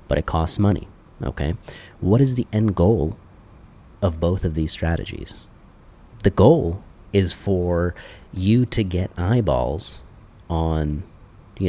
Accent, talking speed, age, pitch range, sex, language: American, 130 wpm, 30-49, 80-100 Hz, male, English